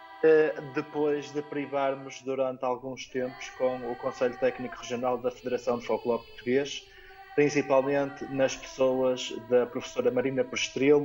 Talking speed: 125 wpm